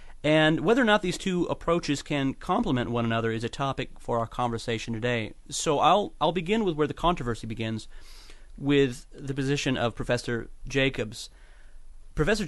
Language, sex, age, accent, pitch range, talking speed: English, male, 30-49, American, 120-150 Hz, 165 wpm